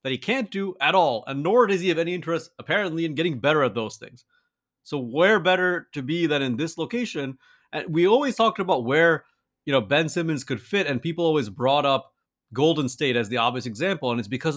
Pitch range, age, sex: 125-165 Hz, 30-49, male